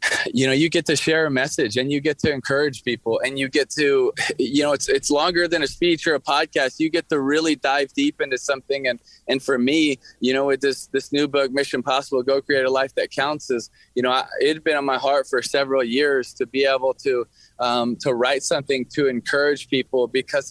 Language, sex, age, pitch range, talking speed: English, male, 20-39, 135-160 Hz, 235 wpm